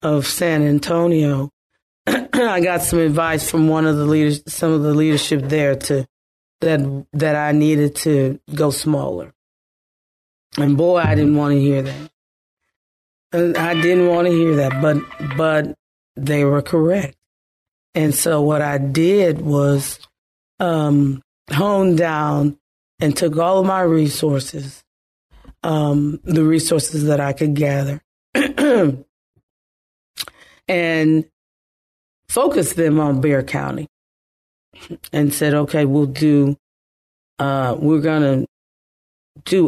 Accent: American